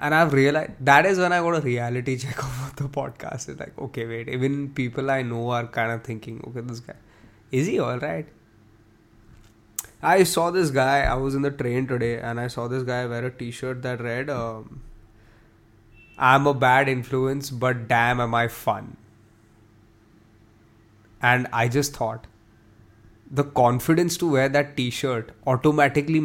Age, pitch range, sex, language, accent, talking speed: 20-39, 110-140 Hz, male, English, Indian, 170 wpm